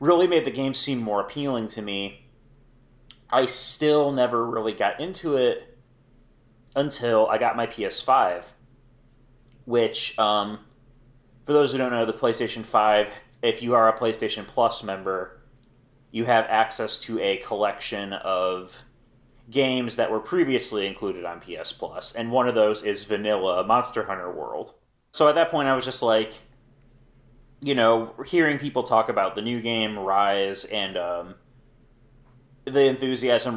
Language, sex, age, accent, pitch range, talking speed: English, male, 30-49, American, 105-130 Hz, 150 wpm